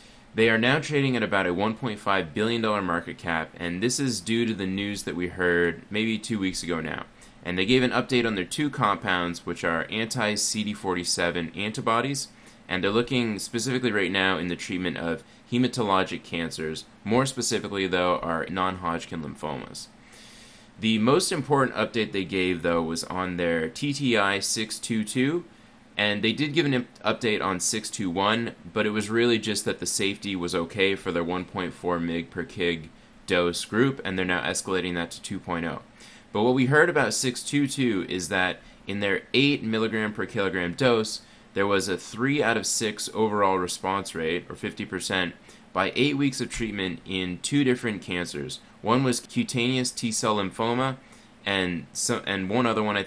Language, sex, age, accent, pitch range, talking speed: English, male, 20-39, American, 90-120 Hz, 170 wpm